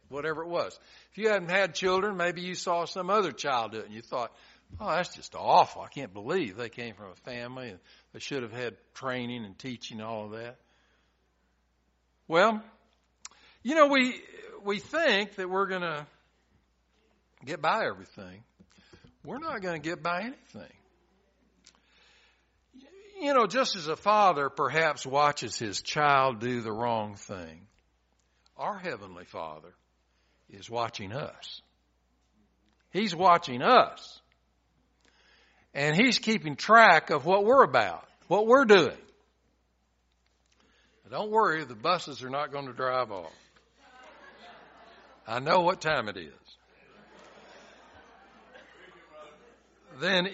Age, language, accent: 60-79, English, American